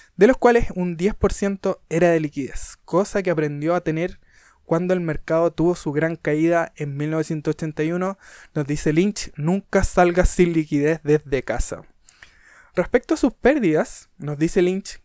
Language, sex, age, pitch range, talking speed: Spanish, male, 20-39, 155-195 Hz, 150 wpm